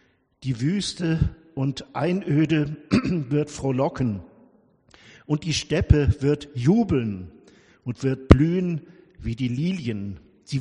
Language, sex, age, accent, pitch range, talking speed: German, male, 60-79, German, 125-160 Hz, 100 wpm